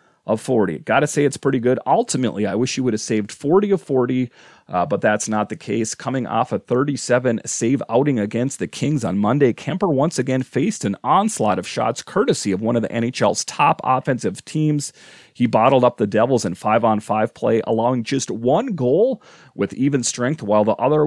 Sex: male